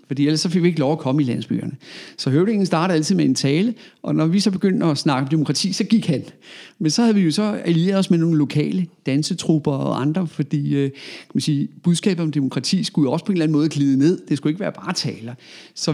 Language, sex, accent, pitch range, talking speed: Danish, male, native, 140-185 Hz, 255 wpm